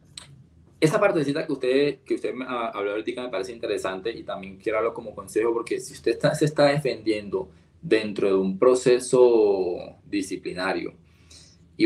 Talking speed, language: 160 wpm, Spanish